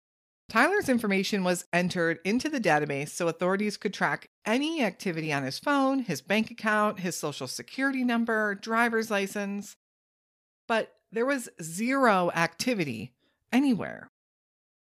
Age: 40-59